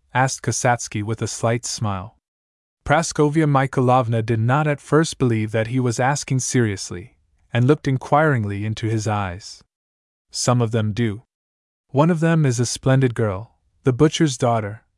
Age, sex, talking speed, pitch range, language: 20-39, male, 150 wpm, 105-135 Hz, English